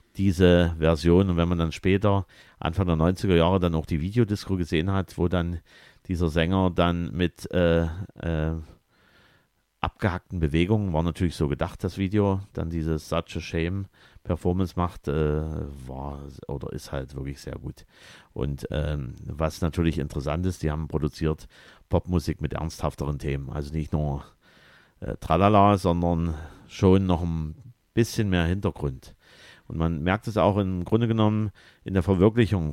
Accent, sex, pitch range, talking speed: German, male, 80-100 Hz, 155 wpm